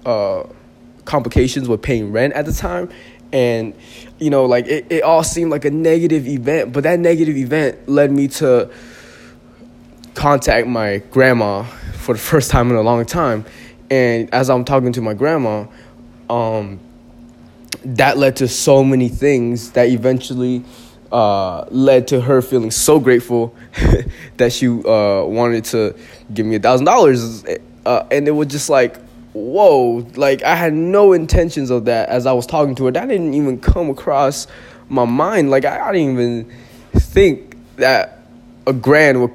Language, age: English, 20-39